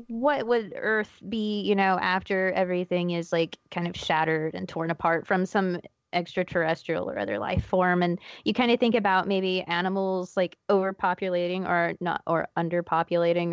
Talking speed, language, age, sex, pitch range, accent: 165 wpm, English, 20-39, female, 185-225 Hz, American